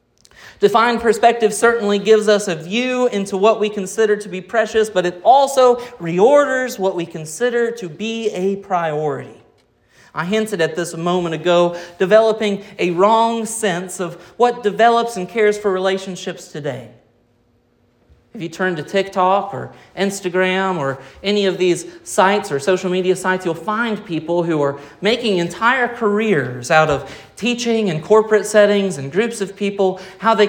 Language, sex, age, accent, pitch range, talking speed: English, male, 30-49, American, 155-210 Hz, 155 wpm